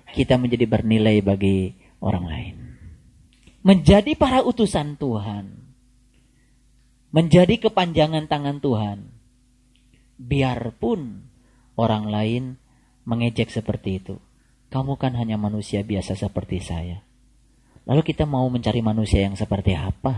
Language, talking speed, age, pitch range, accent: Indonesian, 105 wpm, 30-49, 115-175 Hz, native